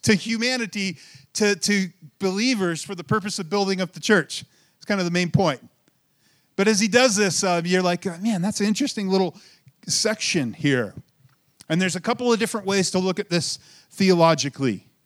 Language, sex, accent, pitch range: English, male, American, 150-195 Hz